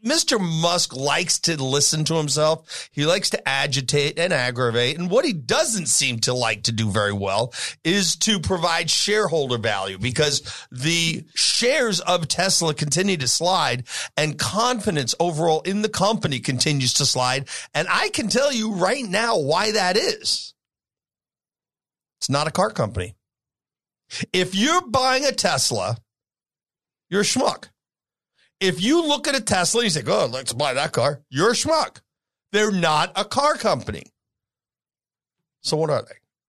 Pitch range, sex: 140-215 Hz, male